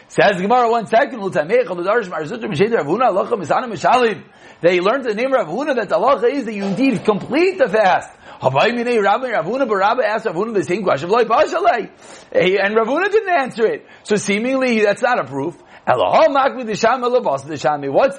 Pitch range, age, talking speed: 195-270 Hz, 40-59, 110 wpm